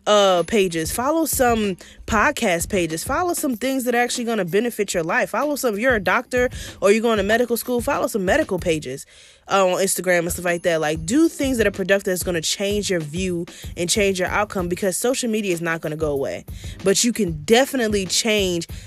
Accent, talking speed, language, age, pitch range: American, 225 wpm, English, 20-39, 170-215 Hz